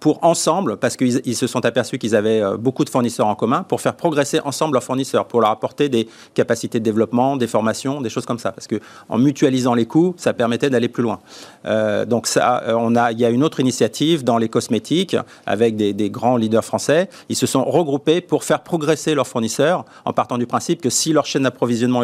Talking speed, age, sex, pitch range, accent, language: 225 wpm, 40-59, male, 120-150 Hz, French, French